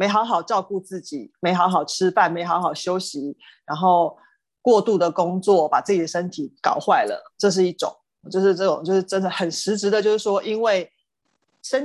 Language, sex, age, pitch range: Chinese, female, 30-49, 175-220 Hz